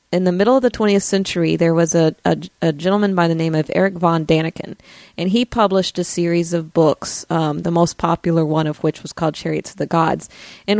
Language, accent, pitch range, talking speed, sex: English, American, 165-195 Hz, 230 wpm, female